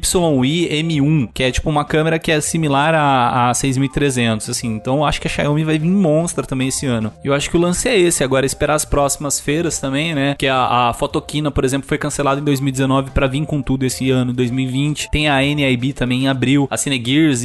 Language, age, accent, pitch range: Portuguese, 20-39, Brazilian, 130-155 Hz